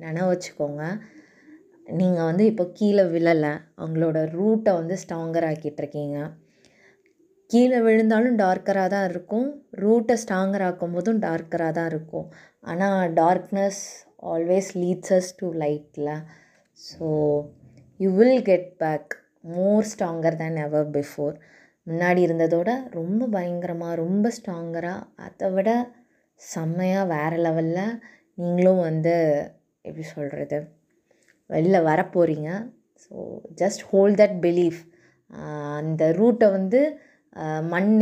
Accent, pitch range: native, 160-200 Hz